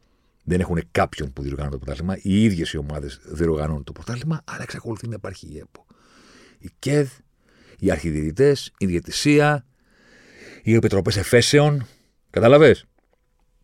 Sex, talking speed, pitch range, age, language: male, 130 wpm, 80-120 Hz, 50-69, Greek